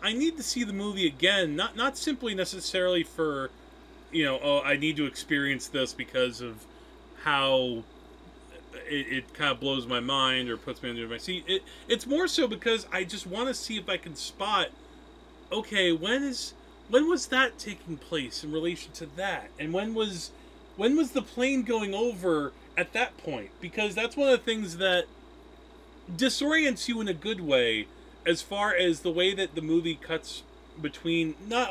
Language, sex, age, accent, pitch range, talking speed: English, male, 30-49, American, 145-240 Hz, 185 wpm